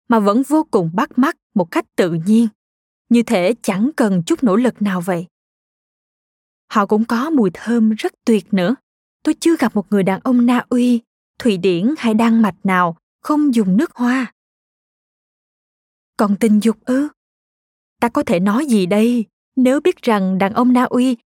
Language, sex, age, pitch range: Vietnamese, female, 20-39, 205-255 Hz